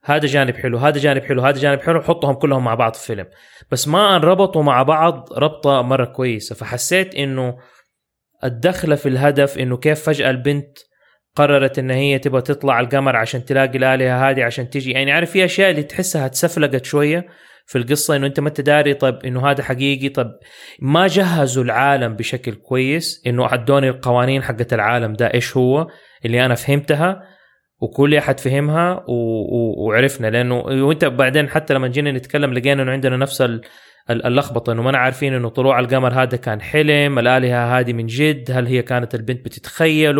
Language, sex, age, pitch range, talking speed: English, male, 20-39, 130-150 Hz, 170 wpm